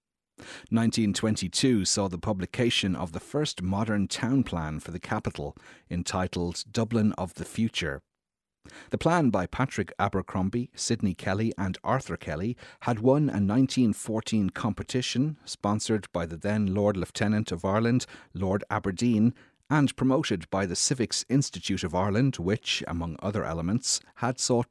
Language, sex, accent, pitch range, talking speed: English, male, Irish, 90-115 Hz, 140 wpm